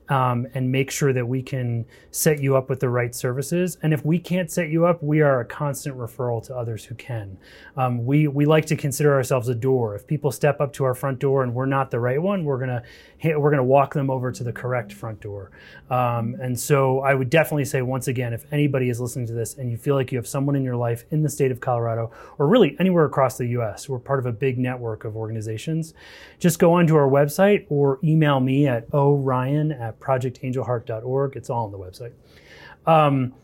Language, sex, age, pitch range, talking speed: English, male, 30-49, 125-150 Hz, 230 wpm